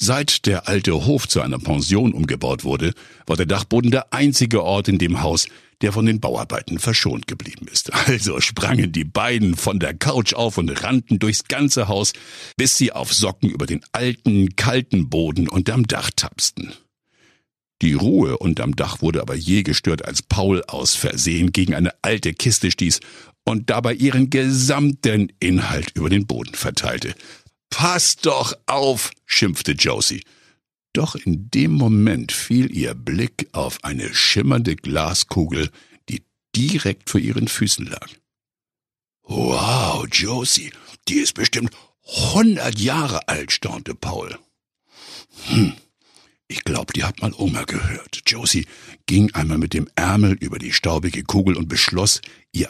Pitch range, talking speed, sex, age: 85-120 Hz, 145 wpm, male, 60-79